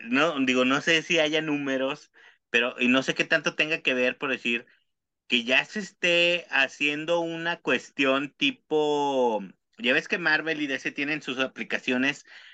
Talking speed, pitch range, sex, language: 165 wpm, 125-170 Hz, male, Spanish